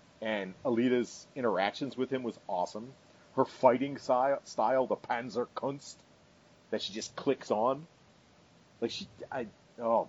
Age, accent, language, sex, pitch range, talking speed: 40-59, American, English, male, 110-140 Hz, 135 wpm